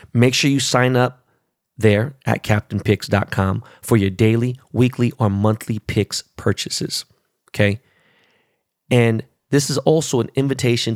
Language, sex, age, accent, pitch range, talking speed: English, male, 30-49, American, 115-155 Hz, 125 wpm